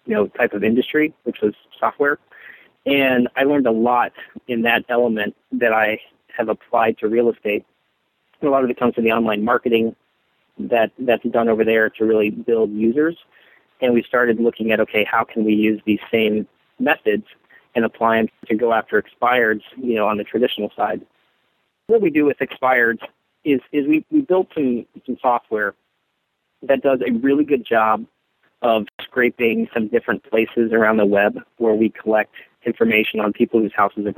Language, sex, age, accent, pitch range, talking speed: English, male, 40-59, American, 110-130 Hz, 185 wpm